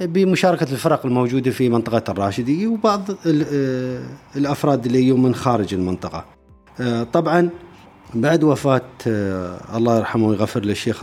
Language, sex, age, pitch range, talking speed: Arabic, male, 30-49, 105-150 Hz, 110 wpm